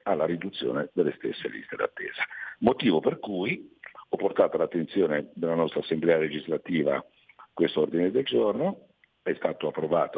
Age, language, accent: 50-69, Italian, native